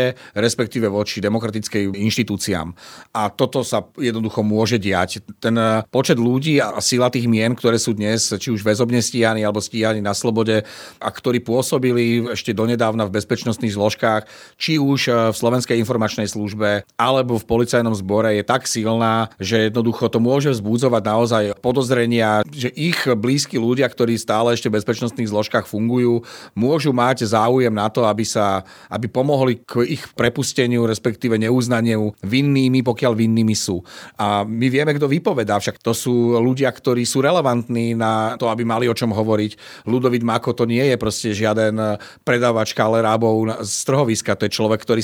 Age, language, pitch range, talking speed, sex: 40-59, Slovak, 110-125 Hz, 160 wpm, male